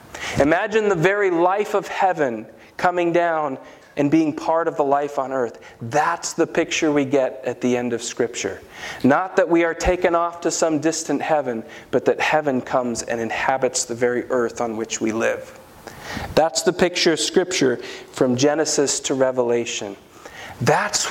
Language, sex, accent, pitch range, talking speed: English, male, American, 130-170 Hz, 170 wpm